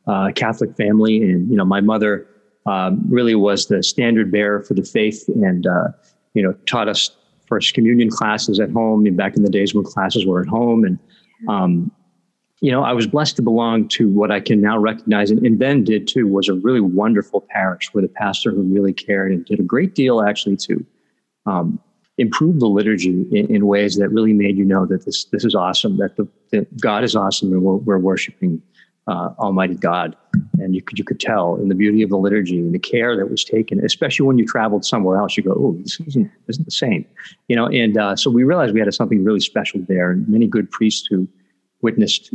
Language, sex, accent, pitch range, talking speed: English, male, American, 100-120 Hz, 225 wpm